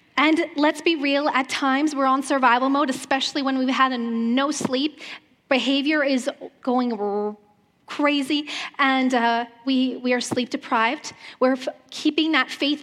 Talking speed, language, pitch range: 155 wpm, English, 235-285 Hz